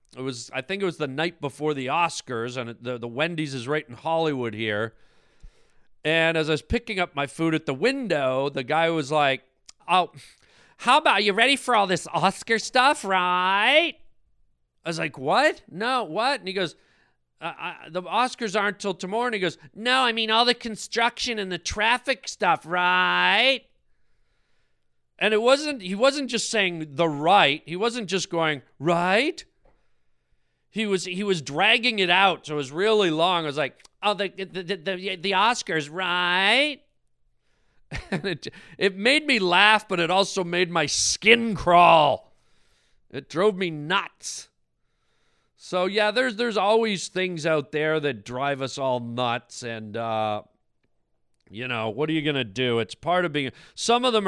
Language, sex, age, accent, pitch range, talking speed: English, male, 40-59, American, 130-205 Hz, 180 wpm